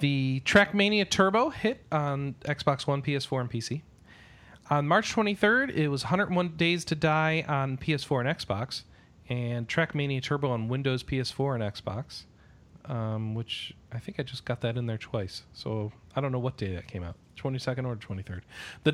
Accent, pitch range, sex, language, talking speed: American, 120-160 Hz, male, English, 175 wpm